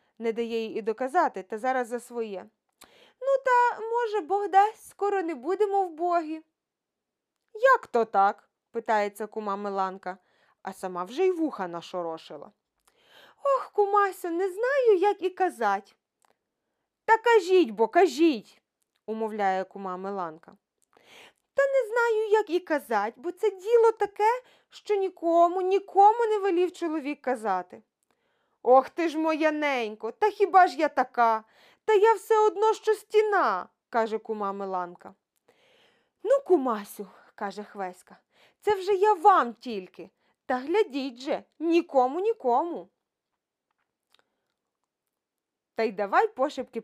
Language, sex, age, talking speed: Ukrainian, female, 20-39, 130 wpm